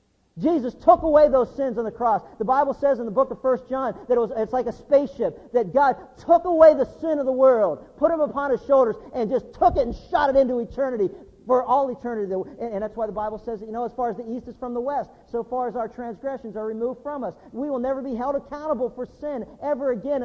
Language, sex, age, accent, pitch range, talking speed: English, male, 50-69, American, 220-275 Hz, 250 wpm